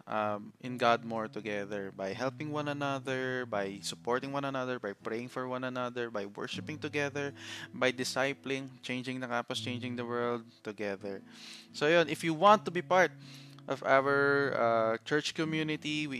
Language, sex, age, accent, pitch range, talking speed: Filipino, male, 20-39, native, 110-135 Hz, 165 wpm